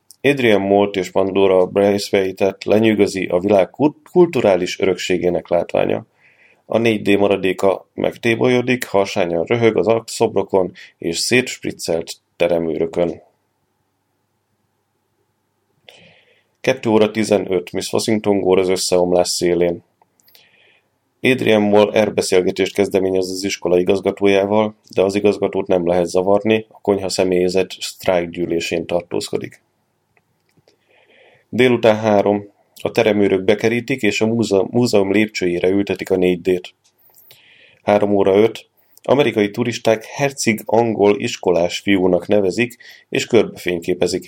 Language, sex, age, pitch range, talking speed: Hungarian, male, 30-49, 95-110 Hz, 95 wpm